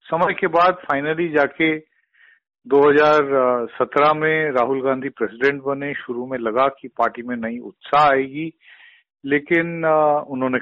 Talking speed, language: 125 wpm, Hindi